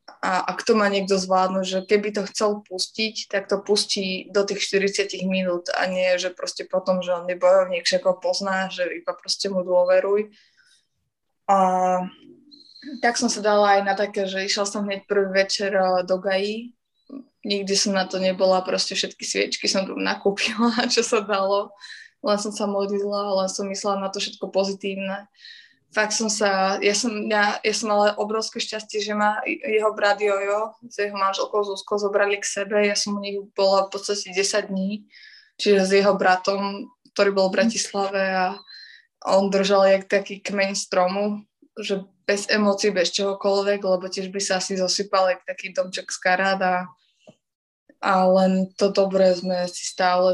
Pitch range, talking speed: 190-210 Hz, 170 wpm